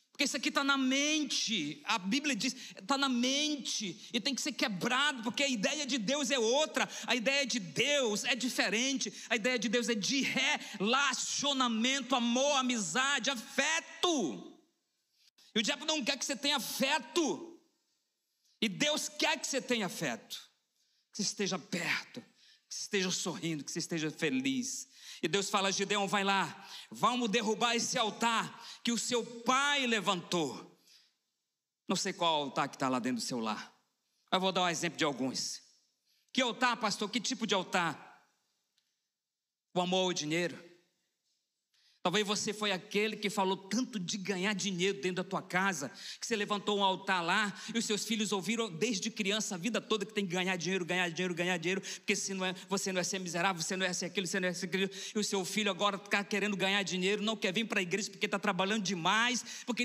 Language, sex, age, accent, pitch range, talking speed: Portuguese, male, 40-59, Brazilian, 190-260 Hz, 190 wpm